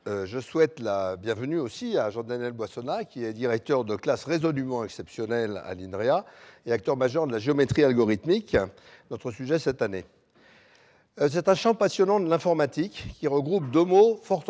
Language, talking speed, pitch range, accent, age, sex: French, 170 wpm, 125-175 Hz, French, 60-79, male